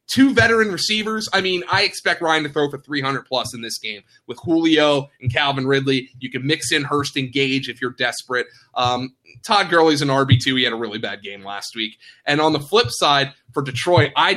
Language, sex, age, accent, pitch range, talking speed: English, male, 20-39, American, 130-185 Hz, 220 wpm